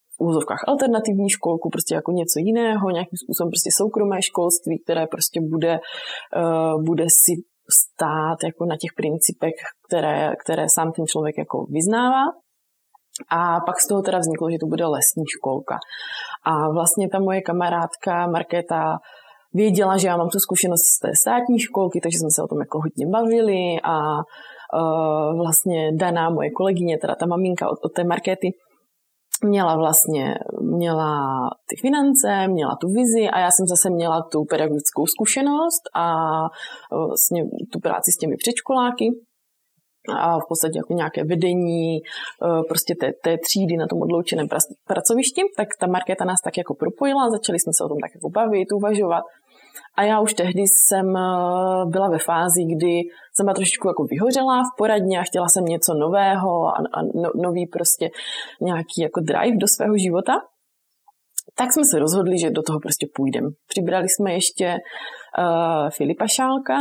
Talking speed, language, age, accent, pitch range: 155 wpm, Czech, 20-39, native, 165-205 Hz